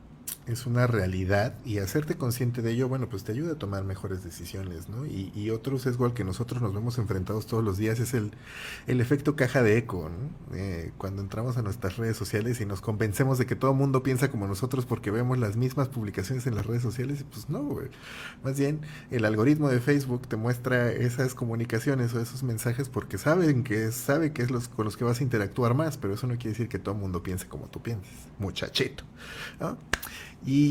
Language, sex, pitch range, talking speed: Spanish, male, 100-135 Hz, 215 wpm